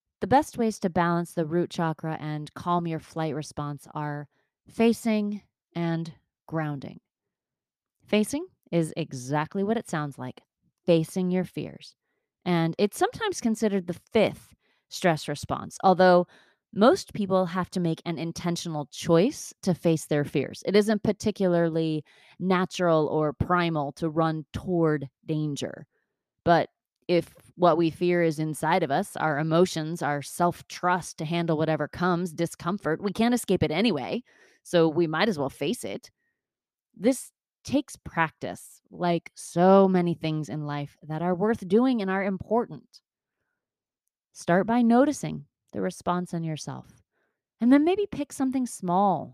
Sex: female